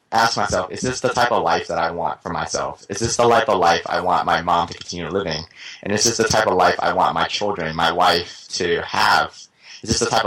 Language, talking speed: English, 265 wpm